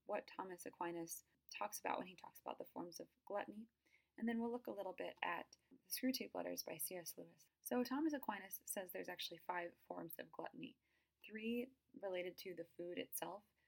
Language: English